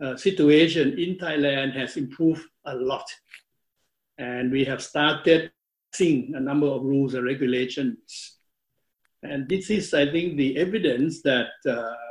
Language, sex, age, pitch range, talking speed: English, male, 60-79, 130-150 Hz, 140 wpm